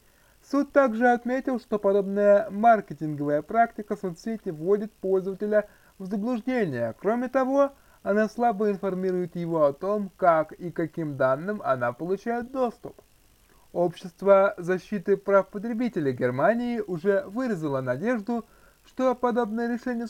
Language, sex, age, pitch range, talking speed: Russian, male, 20-39, 170-235 Hz, 115 wpm